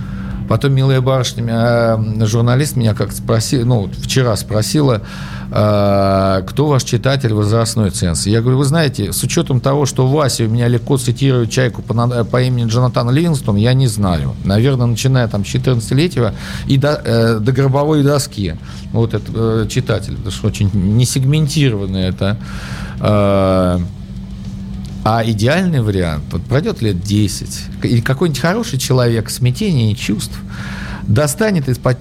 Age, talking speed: 50-69, 140 wpm